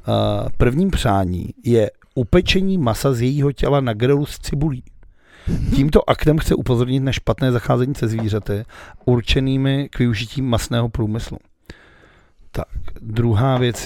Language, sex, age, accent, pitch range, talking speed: Czech, male, 40-59, native, 110-135 Hz, 130 wpm